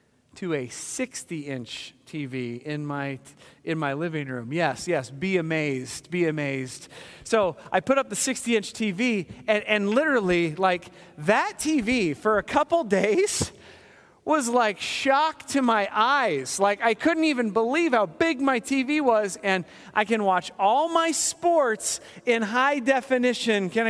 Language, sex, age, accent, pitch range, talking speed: English, male, 30-49, American, 185-265 Hz, 150 wpm